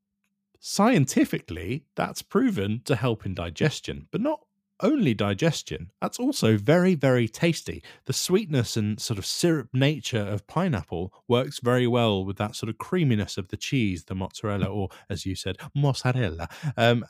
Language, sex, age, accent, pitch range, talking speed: English, male, 20-39, British, 110-180 Hz, 155 wpm